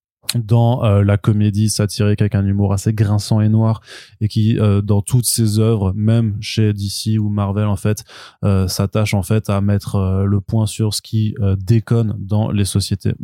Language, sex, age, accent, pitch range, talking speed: French, male, 20-39, French, 100-115 Hz, 195 wpm